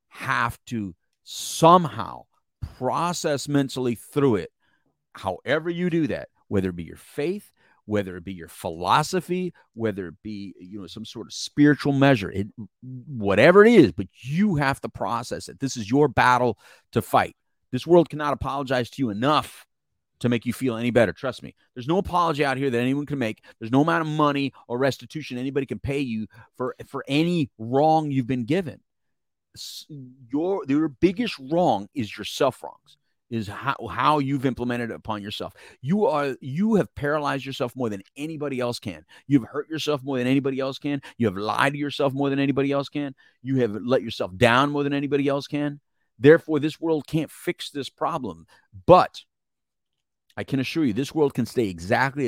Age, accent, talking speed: 40-59, American, 185 wpm